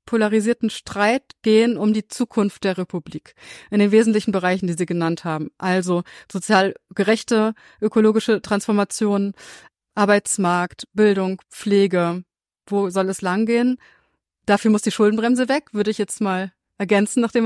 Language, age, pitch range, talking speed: German, 30-49, 195-235 Hz, 135 wpm